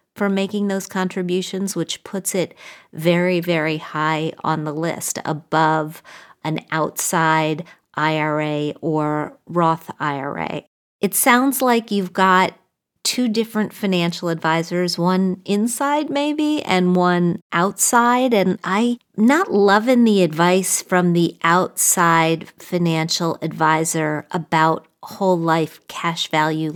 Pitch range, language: 165-205 Hz, English